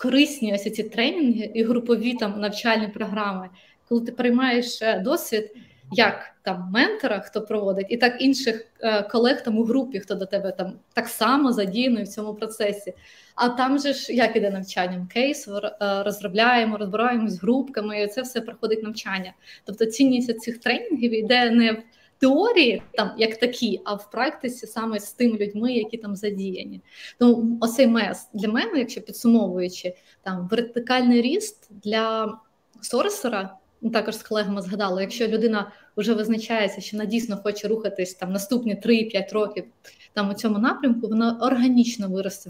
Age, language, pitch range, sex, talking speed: 20-39, Ukrainian, 205-245 Hz, female, 150 wpm